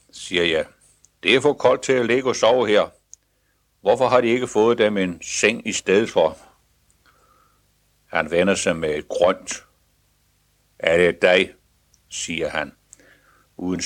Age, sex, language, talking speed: 60-79, male, Danish, 150 wpm